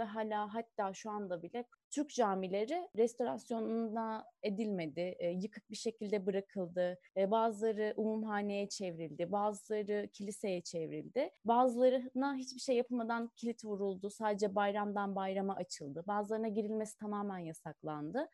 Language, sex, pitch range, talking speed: Turkish, female, 200-250 Hz, 110 wpm